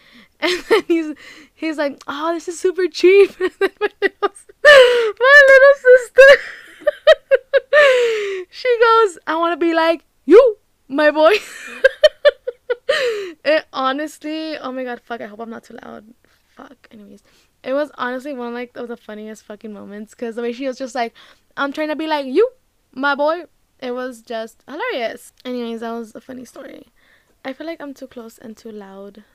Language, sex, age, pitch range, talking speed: English, female, 10-29, 220-310 Hz, 165 wpm